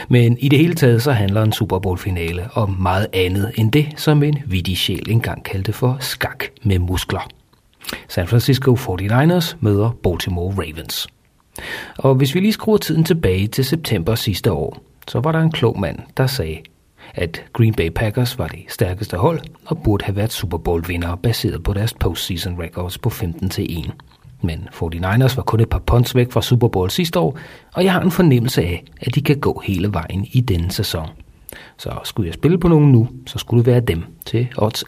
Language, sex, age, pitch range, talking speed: Danish, male, 40-59, 95-135 Hz, 195 wpm